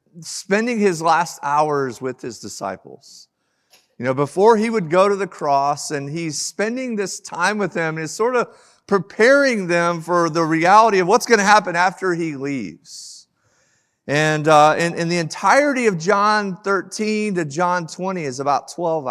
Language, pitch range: English, 145-195 Hz